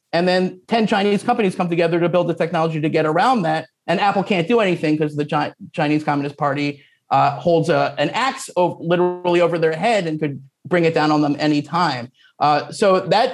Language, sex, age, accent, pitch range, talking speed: English, male, 30-49, American, 150-195 Hz, 205 wpm